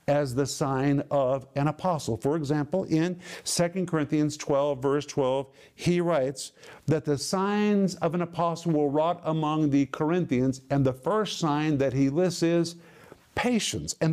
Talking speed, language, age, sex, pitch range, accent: 155 wpm, English, 50-69, male, 135-170 Hz, American